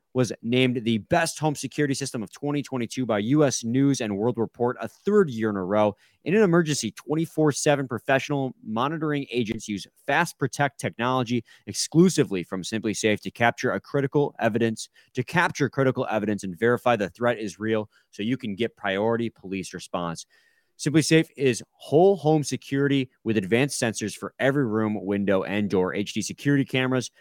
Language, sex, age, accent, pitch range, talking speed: English, male, 30-49, American, 105-140 Hz, 170 wpm